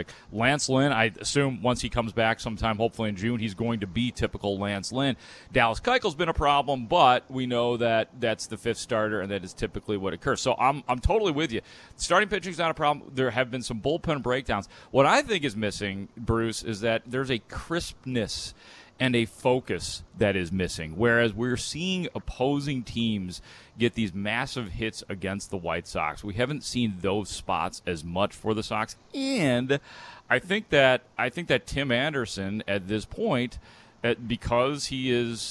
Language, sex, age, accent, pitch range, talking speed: English, male, 30-49, American, 105-125 Hz, 185 wpm